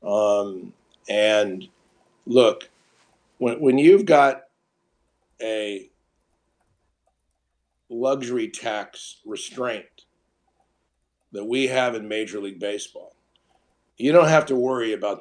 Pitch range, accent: 105-135 Hz, American